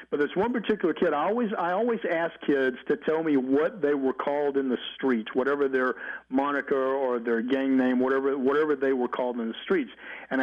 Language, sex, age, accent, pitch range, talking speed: English, male, 50-69, American, 125-150 Hz, 205 wpm